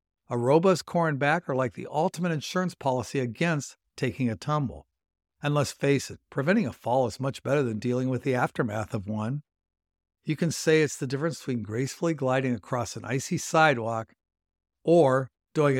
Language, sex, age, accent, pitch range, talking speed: English, male, 60-79, American, 120-175 Hz, 180 wpm